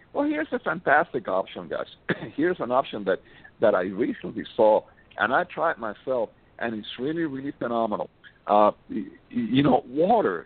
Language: English